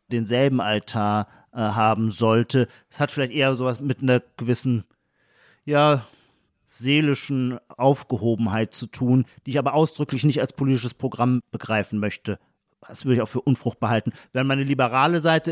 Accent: German